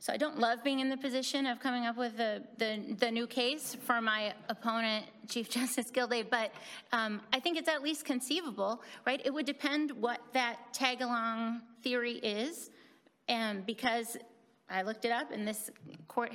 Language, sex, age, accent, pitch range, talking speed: English, female, 30-49, American, 215-250 Hz, 180 wpm